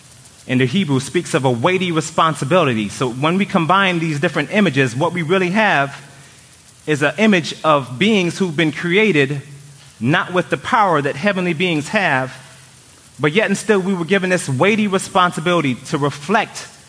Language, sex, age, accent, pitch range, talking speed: English, male, 30-49, American, 130-180 Hz, 165 wpm